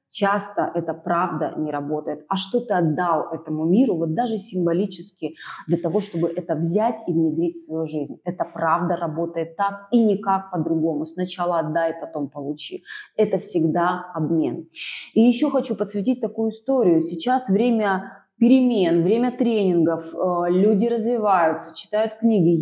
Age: 20-39